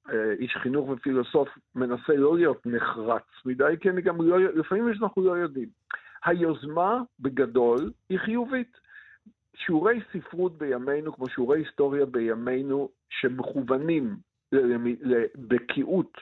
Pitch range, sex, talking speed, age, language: 130-195 Hz, male, 120 wpm, 50-69, Hebrew